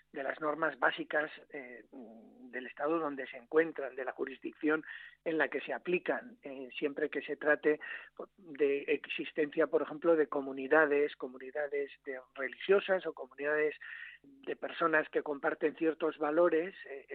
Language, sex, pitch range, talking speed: Spanish, male, 145-170 Hz, 145 wpm